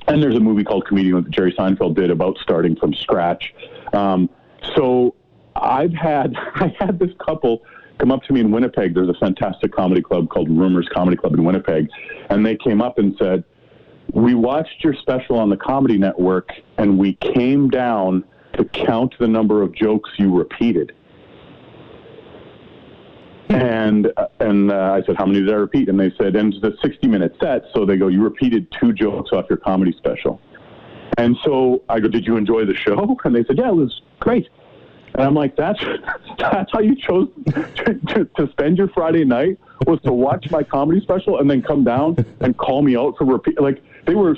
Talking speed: 190 wpm